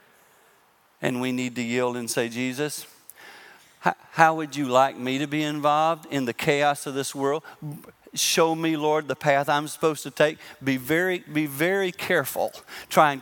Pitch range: 120-150 Hz